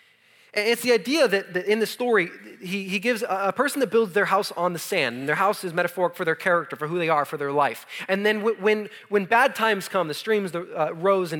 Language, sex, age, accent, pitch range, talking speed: English, male, 30-49, American, 145-200 Hz, 220 wpm